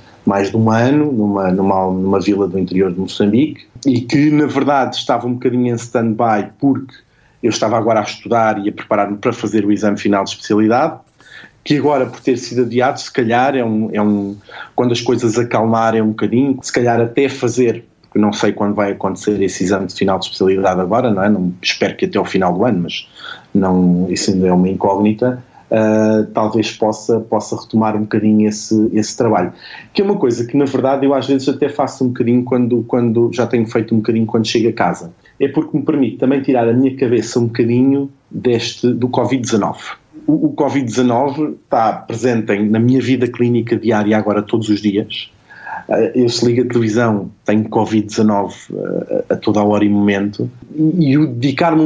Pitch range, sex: 105-125 Hz, male